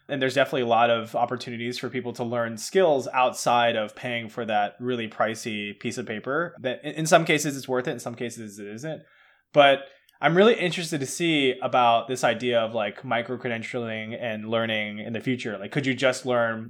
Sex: male